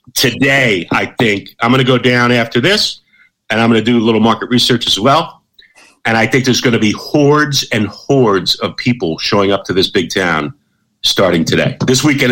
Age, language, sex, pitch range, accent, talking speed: 50-69, English, male, 115-150 Hz, American, 210 wpm